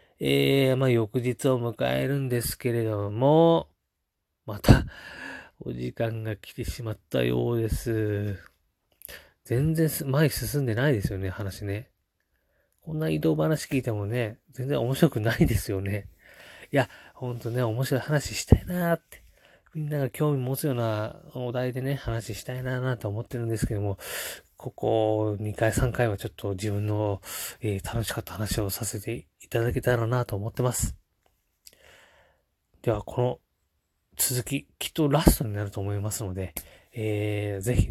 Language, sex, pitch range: Japanese, male, 100-125 Hz